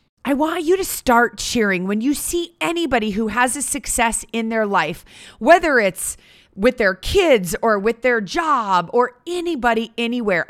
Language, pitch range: English, 185-260 Hz